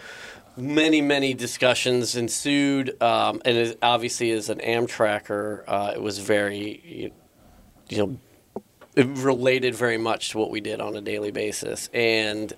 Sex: male